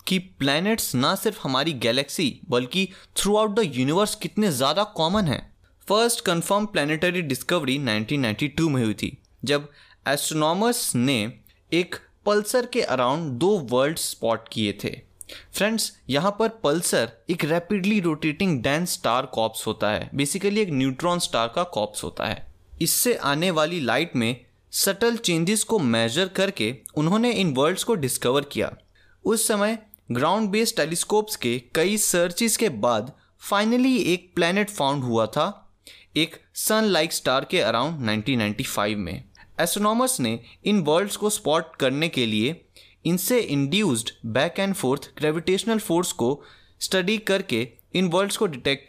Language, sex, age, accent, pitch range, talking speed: Hindi, male, 20-39, native, 130-205 Hz, 120 wpm